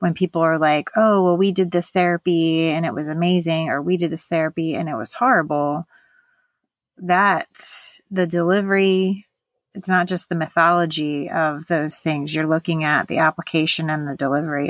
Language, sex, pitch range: English, female, 155-180 Hz